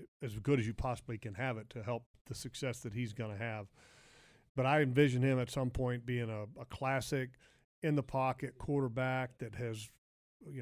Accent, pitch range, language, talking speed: American, 125-140 Hz, English, 200 wpm